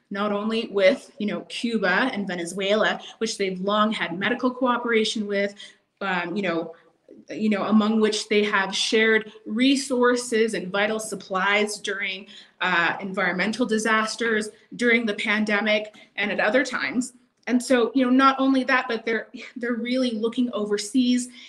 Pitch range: 205-245 Hz